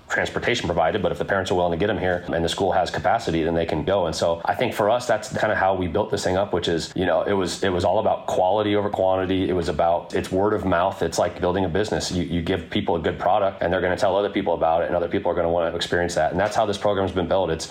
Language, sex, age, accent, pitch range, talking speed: English, male, 30-49, American, 90-105 Hz, 320 wpm